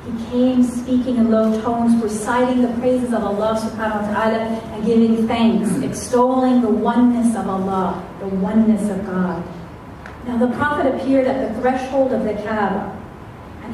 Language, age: English, 40-59